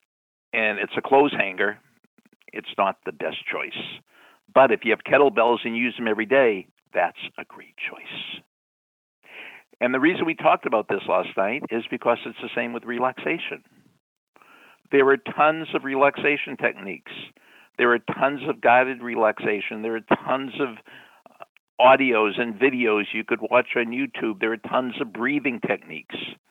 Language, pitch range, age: English, 105-130 Hz, 60-79